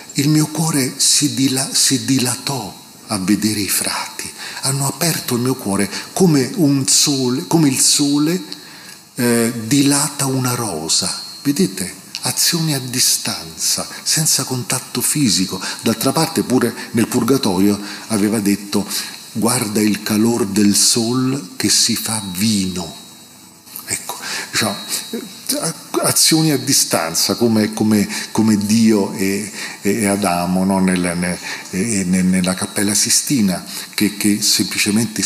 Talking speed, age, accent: 115 wpm, 40-59, native